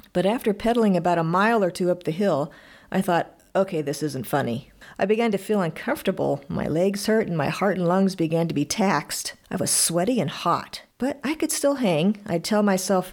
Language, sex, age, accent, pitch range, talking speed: English, female, 50-69, American, 165-230 Hz, 215 wpm